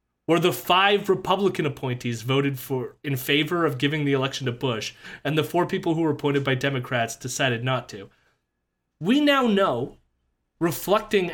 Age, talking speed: 30-49, 165 wpm